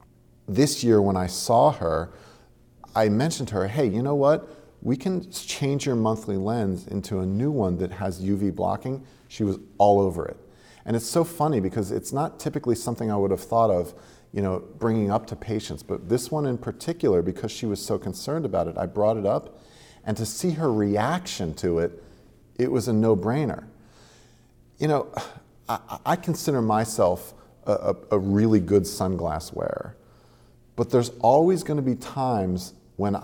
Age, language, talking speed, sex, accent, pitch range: 40-59, English, 180 wpm, male, American, 95-120 Hz